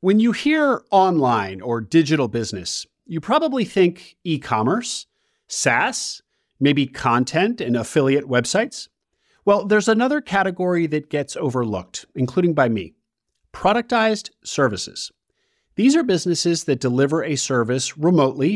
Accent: American